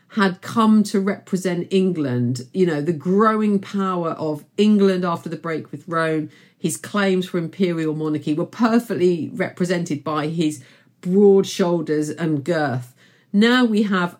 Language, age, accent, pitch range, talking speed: English, 50-69, British, 160-195 Hz, 145 wpm